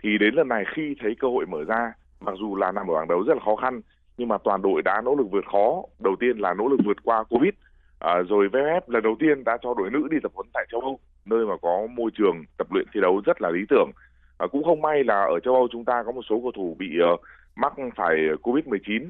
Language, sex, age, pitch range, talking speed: Vietnamese, male, 20-39, 95-130 Hz, 275 wpm